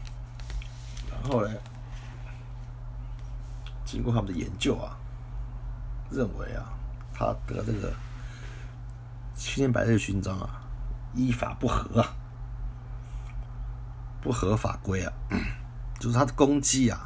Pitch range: 115-120 Hz